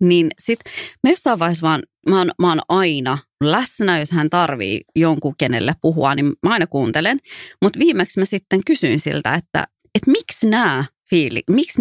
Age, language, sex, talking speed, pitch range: 30-49, English, female, 140 wpm, 155-215 Hz